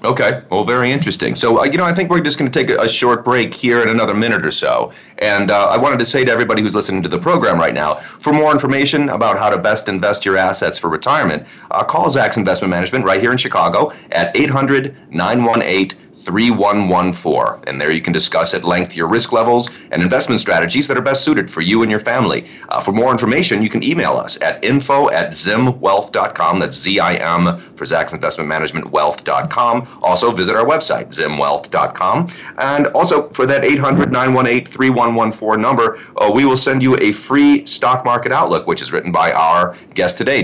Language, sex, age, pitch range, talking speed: English, male, 30-49, 95-130 Hz, 205 wpm